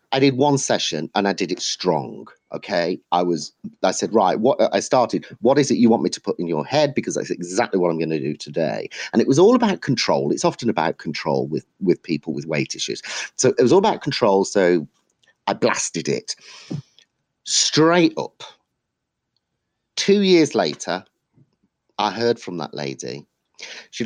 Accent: British